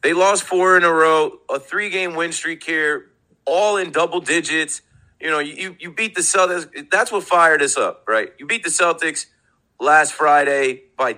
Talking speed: 190 wpm